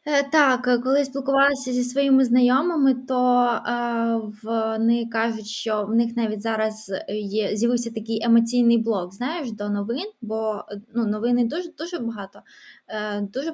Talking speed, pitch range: 130 wpm, 220-265 Hz